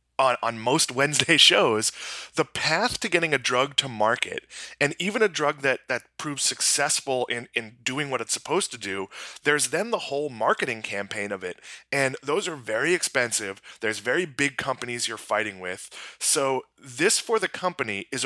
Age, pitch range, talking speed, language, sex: 20-39, 115-150 Hz, 175 wpm, English, male